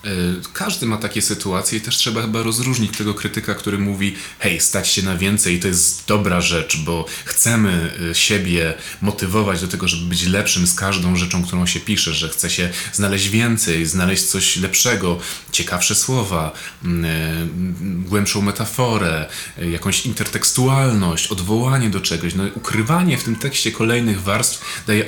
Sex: male